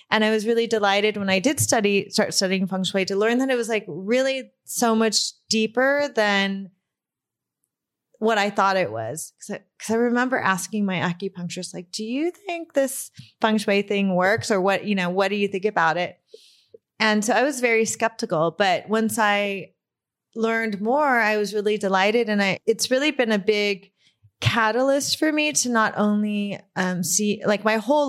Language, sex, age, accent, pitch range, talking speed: English, female, 30-49, American, 195-230 Hz, 190 wpm